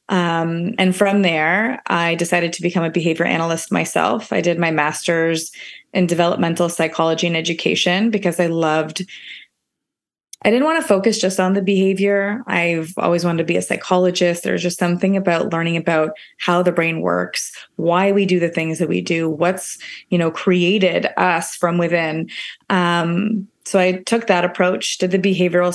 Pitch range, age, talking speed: 170-190 Hz, 20-39, 170 wpm